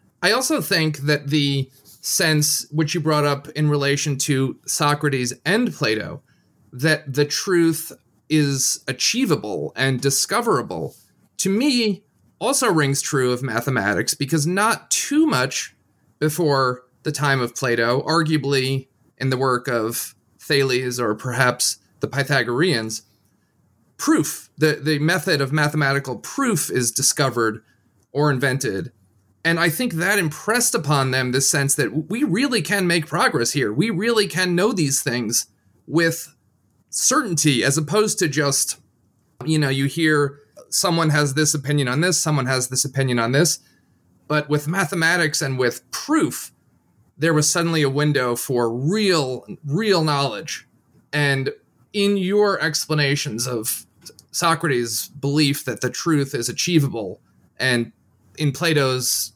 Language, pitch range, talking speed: English, 125-160 Hz, 135 wpm